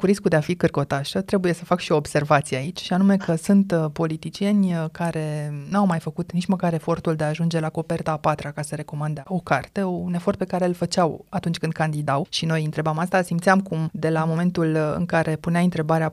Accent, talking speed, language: native, 220 wpm, Romanian